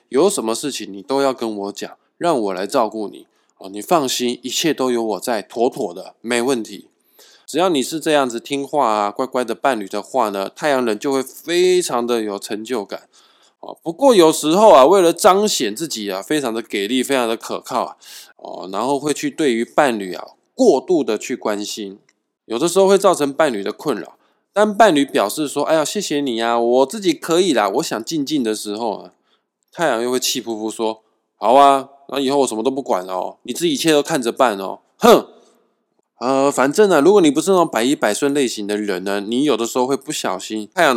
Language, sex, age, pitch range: Chinese, male, 20-39, 110-155 Hz